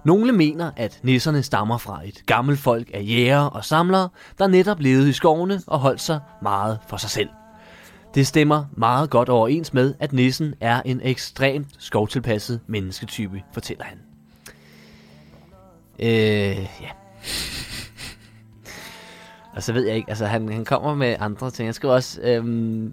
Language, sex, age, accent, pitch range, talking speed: Danish, male, 20-39, native, 110-145 Hz, 155 wpm